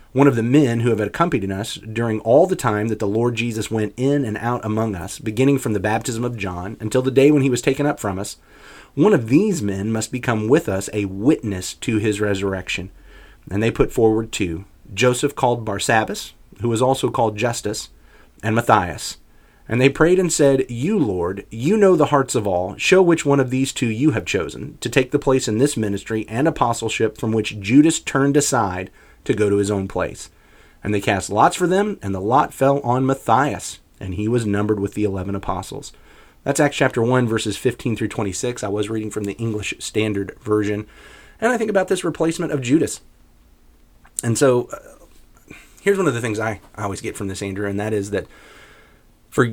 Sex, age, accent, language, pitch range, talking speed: male, 30-49, American, English, 105-135 Hz, 210 wpm